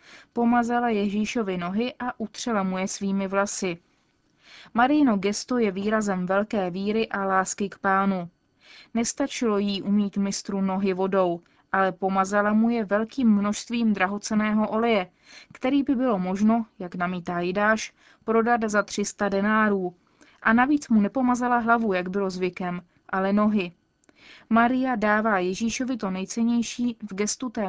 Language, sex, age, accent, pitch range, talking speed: Czech, female, 20-39, native, 190-230 Hz, 135 wpm